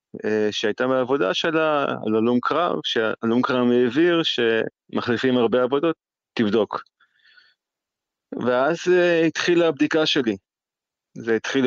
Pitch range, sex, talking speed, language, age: 110-130 Hz, male, 100 wpm, Hebrew, 20-39